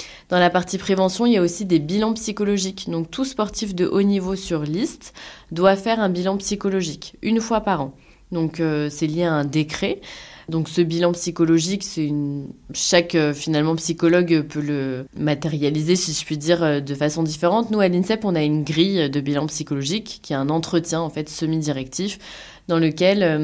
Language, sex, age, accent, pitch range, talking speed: French, female, 20-39, French, 155-195 Hz, 185 wpm